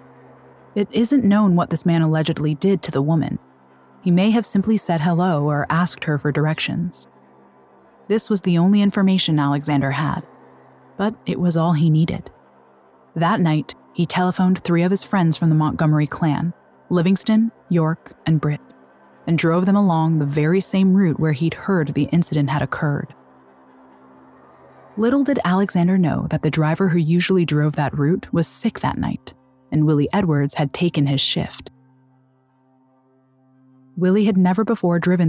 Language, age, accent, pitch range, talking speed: English, 20-39, American, 140-185 Hz, 160 wpm